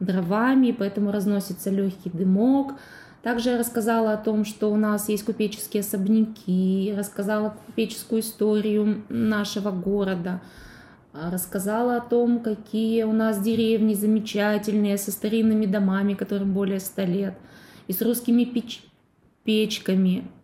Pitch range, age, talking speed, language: 195-225 Hz, 20-39, 120 wpm, Russian